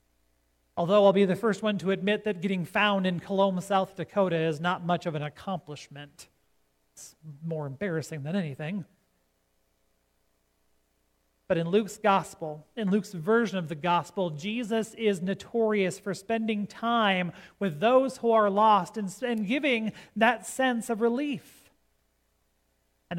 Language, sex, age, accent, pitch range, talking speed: English, male, 40-59, American, 155-225 Hz, 140 wpm